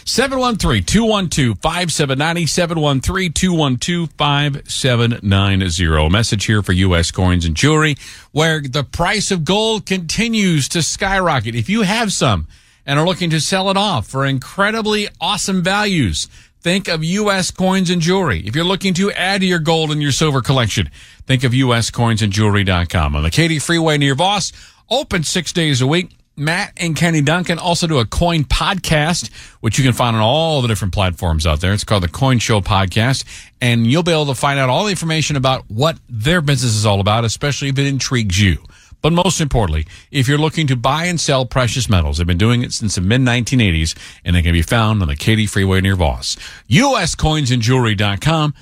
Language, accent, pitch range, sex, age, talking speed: English, American, 110-170 Hz, male, 50-69, 180 wpm